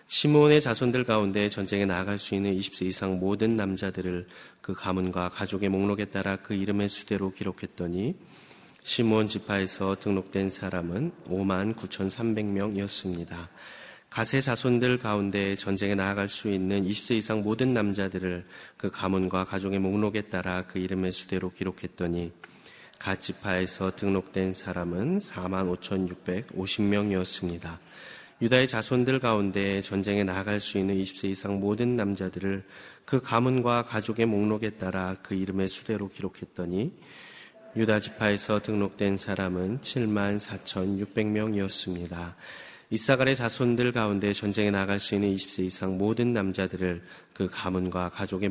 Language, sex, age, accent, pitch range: Korean, male, 30-49, native, 95-105 Hz